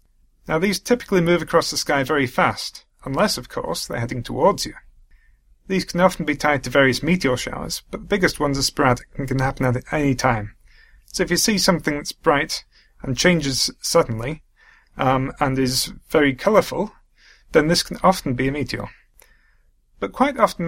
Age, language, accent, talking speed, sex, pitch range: 30-49, English, British, 180 wpm, male, 125-170 Hz